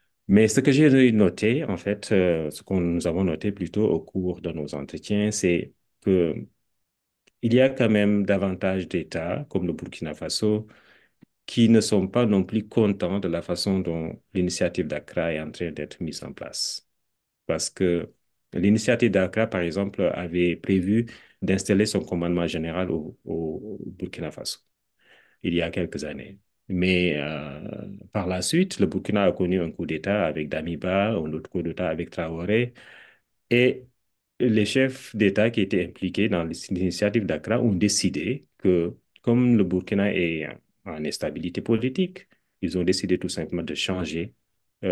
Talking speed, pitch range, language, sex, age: 160 wpm, 85-105 Hz, French, male, 40-59